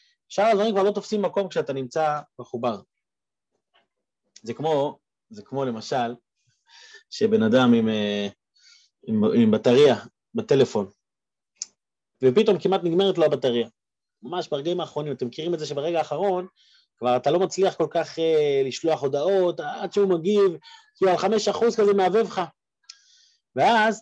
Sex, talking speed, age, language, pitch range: male, 135 wpm, 30-49, Hebrew, 185-260 Hz